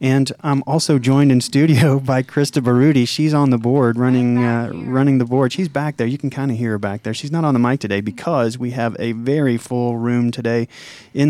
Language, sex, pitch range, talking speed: English, male, 120-135 Hz, 235 wpm